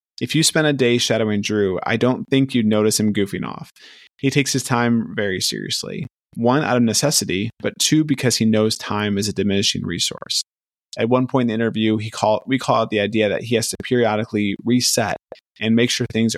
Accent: American